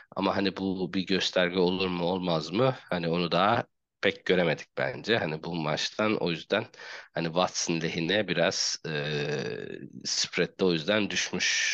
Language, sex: Turkish, male